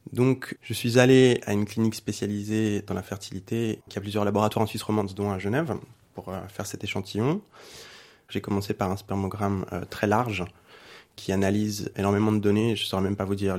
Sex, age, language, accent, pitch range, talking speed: male, 20-39, French, French, 100-120 Hz, 200 wpm